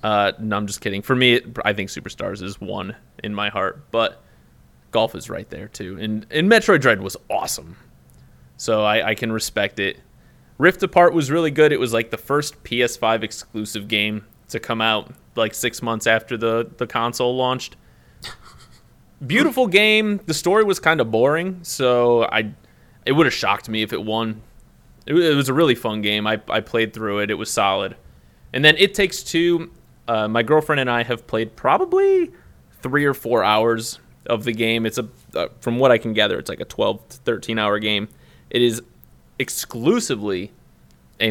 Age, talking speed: 20-39, 190 wpm